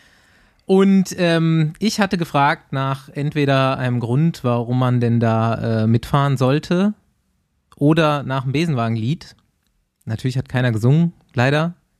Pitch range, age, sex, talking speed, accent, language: 110-140 Hz, 20-39, male, 125 wpm, German, German